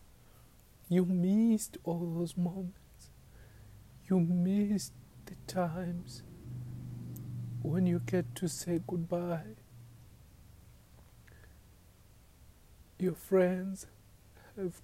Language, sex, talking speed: English, male, 75 wpm